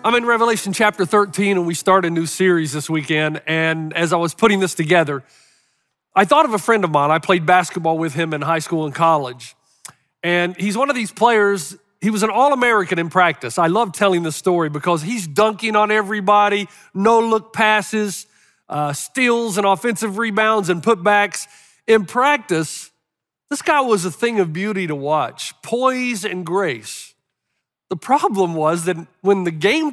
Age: 40-59